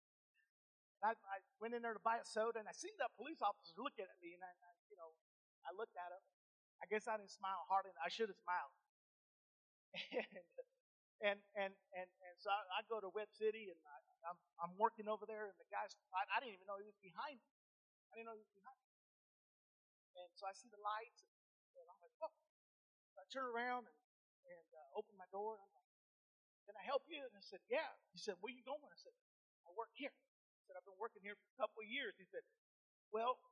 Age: 40-59